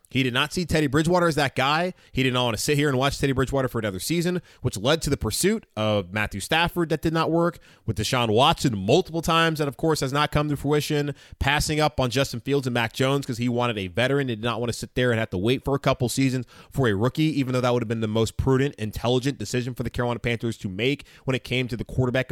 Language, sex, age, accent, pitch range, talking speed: English, male, 20-39, American, 115-155 Hz, 275 wpm